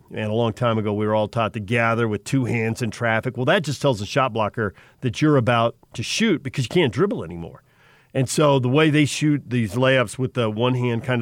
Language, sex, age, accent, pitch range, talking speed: English, male, 40-59, American, 115-145 Hz, 245 wpm